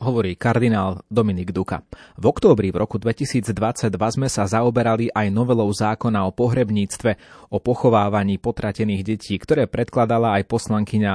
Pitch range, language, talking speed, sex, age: 100-115 Hz, Slovak, 135 wpm, male, 30-49